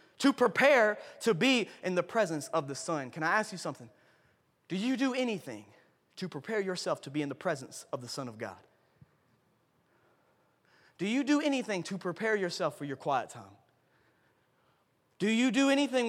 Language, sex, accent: English, male, American